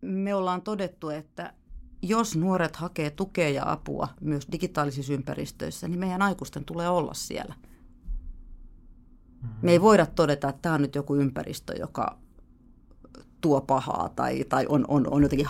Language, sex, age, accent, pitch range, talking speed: Finnish, female, 30-49, native, 140-170 Hz, 145 wpm